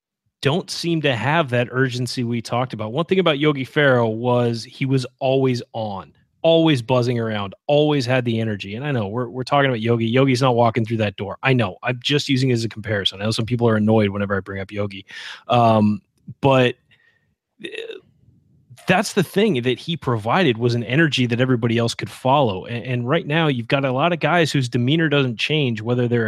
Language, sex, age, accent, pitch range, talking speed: English, male, 30-49, American, 115-140 Hz, 210 wpm